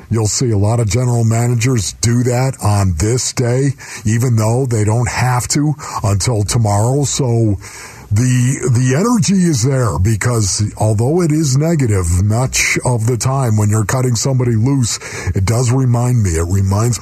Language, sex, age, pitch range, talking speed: English, male, 50-69, 95-130 Hz, 160 wpm